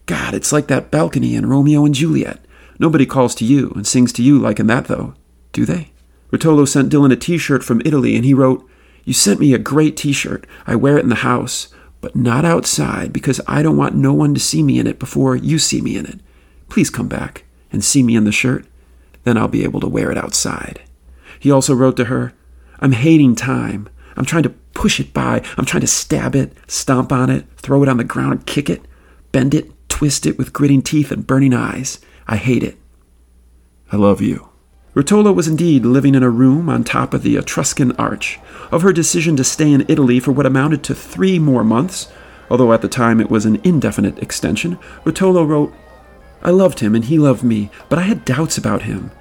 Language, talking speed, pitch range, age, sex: English, 215 wpm, 105-150 Hz, 40-59, male